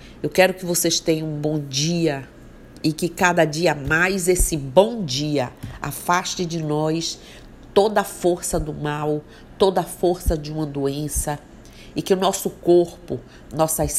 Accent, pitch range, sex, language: Brazilian, 150-175 Hz, female, Portuguese